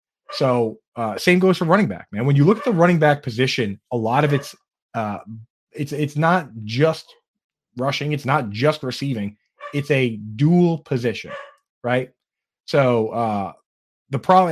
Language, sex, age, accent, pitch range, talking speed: English, male, 20-39, American, 125-165 Hz, 160 wpm